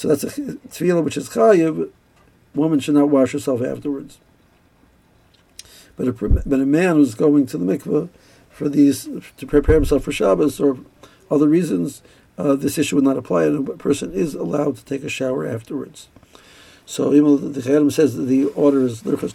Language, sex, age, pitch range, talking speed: English, male, 60-79, 135-155 Hz, 185 wpm